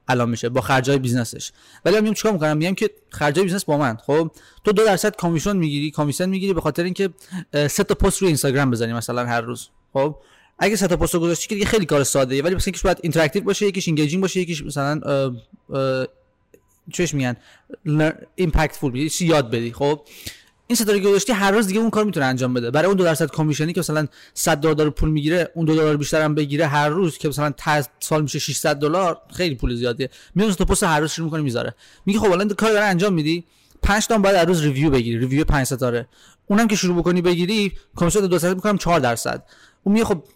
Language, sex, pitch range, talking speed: Persian, male, 145-195 Hz, 215 wpm